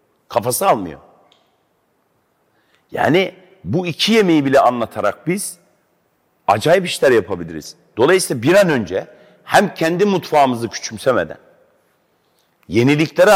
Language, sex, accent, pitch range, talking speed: Turkish, male, native, 130-165 Hz, 95 wpm